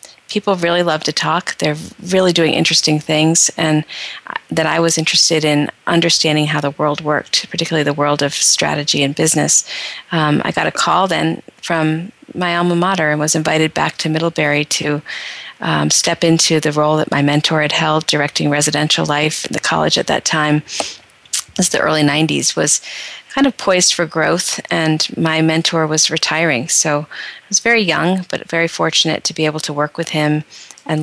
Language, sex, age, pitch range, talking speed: English, female, 40-59, 150-165 Hz, 185 wpm